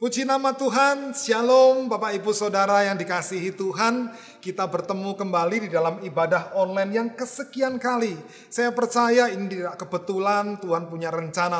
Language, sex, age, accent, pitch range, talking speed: Indonesian, male, 30-49, native, 185-260 Hz, 145 wpm